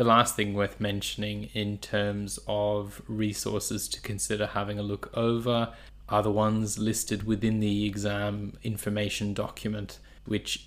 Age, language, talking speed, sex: 20-39, English, 140 wpm, male